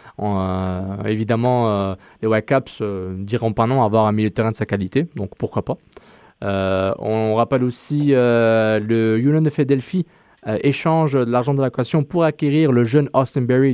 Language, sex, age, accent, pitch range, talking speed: French, male, 20-39, French, 105-135 Hz, 195 wpm